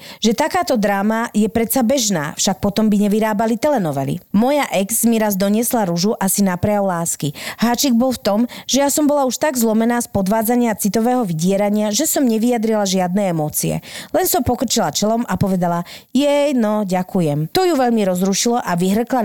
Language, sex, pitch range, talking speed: Slovak, female, 200-250 Hz, 175 wpm